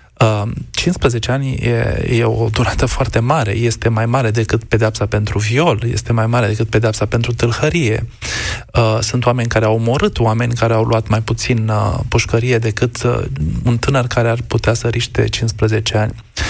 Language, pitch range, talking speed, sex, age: Romanian, 110-130 Hz, 160 wpm, male, 20-39